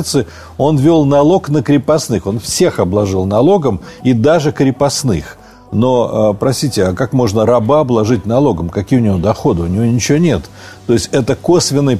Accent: native